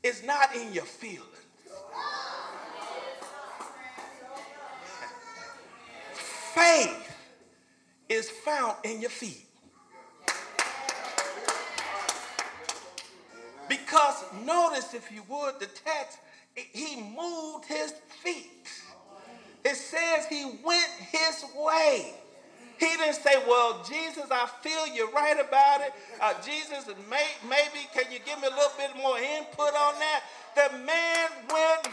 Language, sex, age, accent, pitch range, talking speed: English, male, 50-69, American, 265-320 Hz, 105 wpm